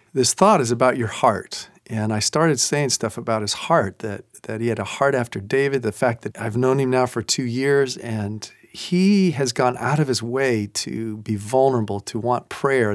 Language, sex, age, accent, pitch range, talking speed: English, male, 40-59, American, 110-135 Hz, 215 wpm